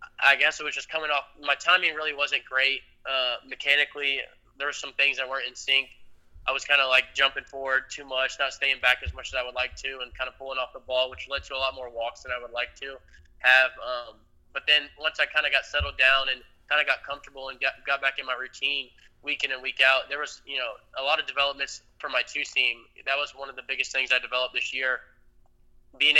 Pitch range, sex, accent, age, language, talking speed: 130-140 Hz, male, American, 20-39, English, 255 wpm